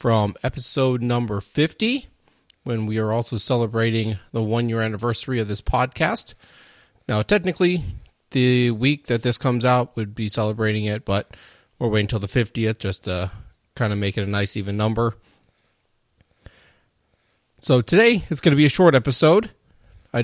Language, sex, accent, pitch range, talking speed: English, male, American, 105-120 Hz, 160 wpm